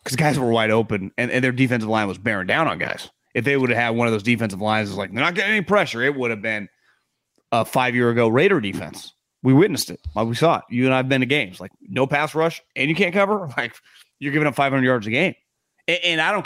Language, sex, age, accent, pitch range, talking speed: English, male, 30-49, American, 115-180 Hz, 275 wpm